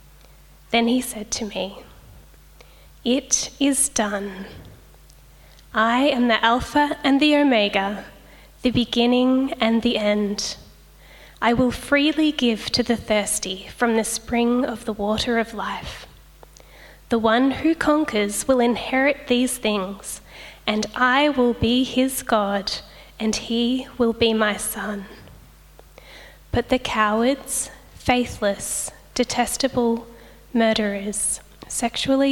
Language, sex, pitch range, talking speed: English, female, 210-250 Hz, 115 wpm